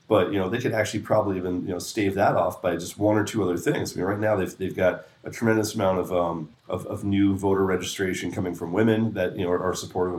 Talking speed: 270 wpm